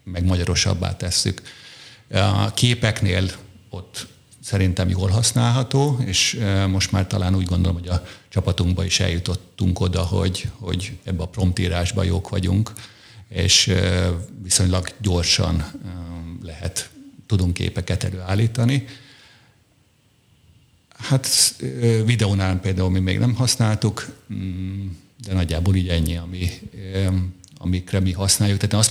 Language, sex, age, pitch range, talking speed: Hungarian, male, 50-69, 90-110 Hz, 110 wpm